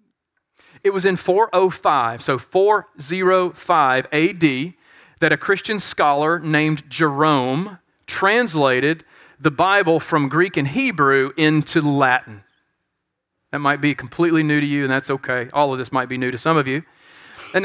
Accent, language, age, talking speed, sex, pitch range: American, English, 40-59, 145 wpm, male, 145-180 Hz